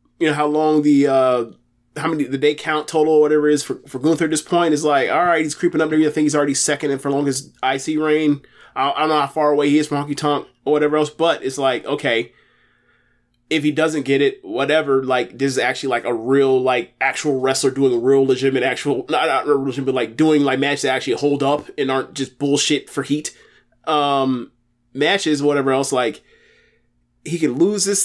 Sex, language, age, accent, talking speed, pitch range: male, English, 20-39, American, 235 wpm, 140-175 Hz